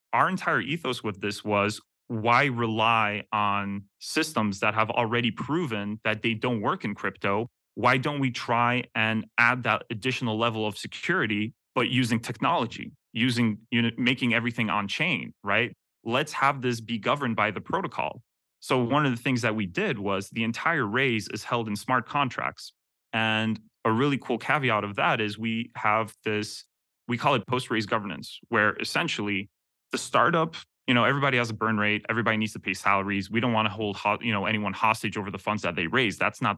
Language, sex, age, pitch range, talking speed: English, male, 30-49, 105-120 Hz, 185 wpm